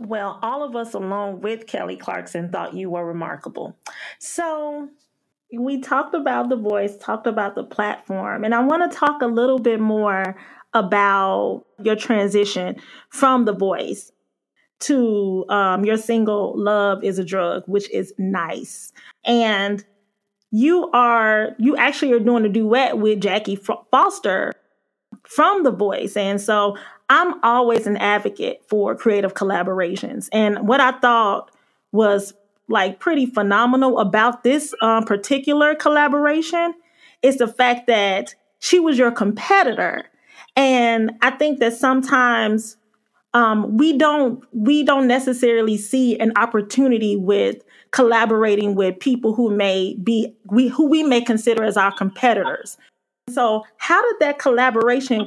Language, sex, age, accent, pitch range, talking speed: English, female, 30-49, American, 205-260 Hz, 140 wpm